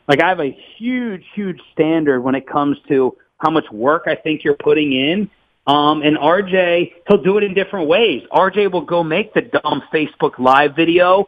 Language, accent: English, American